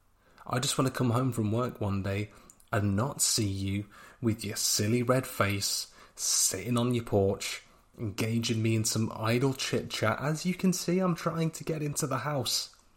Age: 30-49